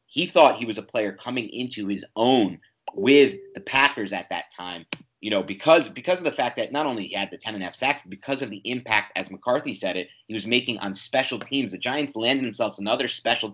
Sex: male